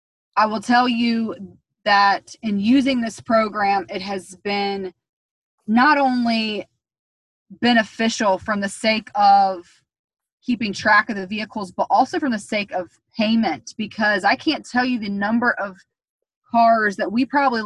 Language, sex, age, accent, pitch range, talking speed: English, female, 20-39, American, 200-235 Hz, 145 wpm